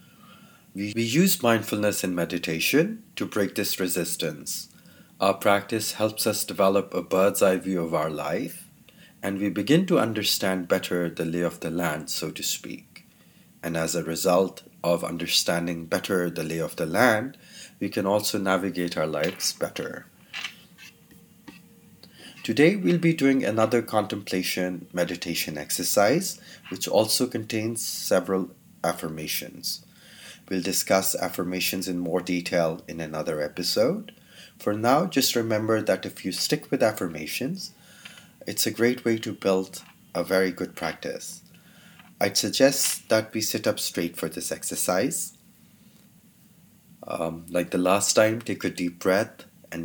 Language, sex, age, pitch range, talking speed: English, male, 30-49, 90-115 Hz, 140 wpm